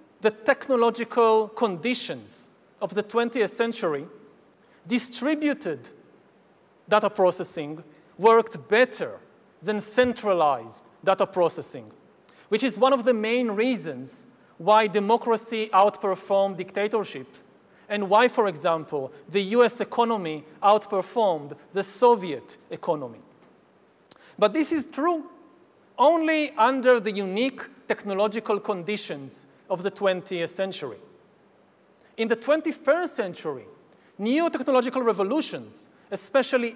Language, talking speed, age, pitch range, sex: English, 100 wpm, 40-59, 200-250 Hz, male